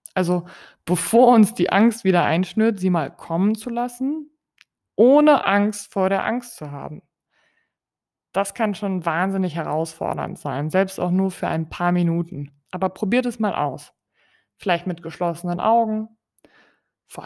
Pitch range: 165-215 Hz